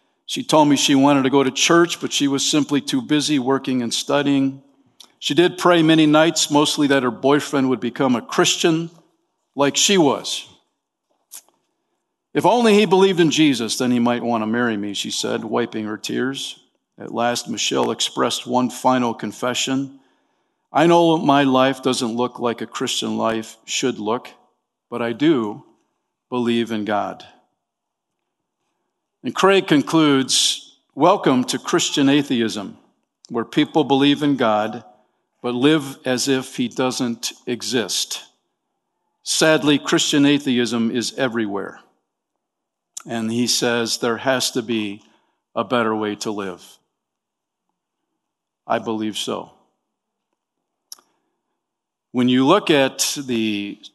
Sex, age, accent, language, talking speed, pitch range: male, 50-69, American, English, 135 wpm, 115-145 Hz